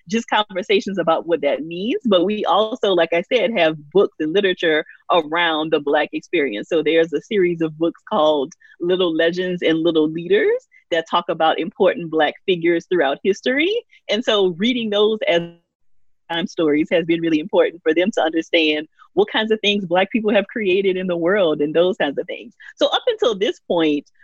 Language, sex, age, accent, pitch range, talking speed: English, female, 30-49, American, 160-210 Hz, 190 wpm